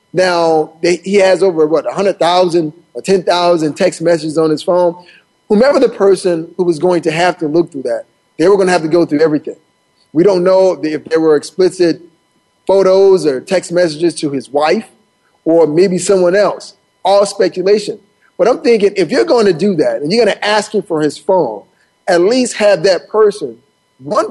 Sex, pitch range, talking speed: male, 160-200 Hz, 195 wpm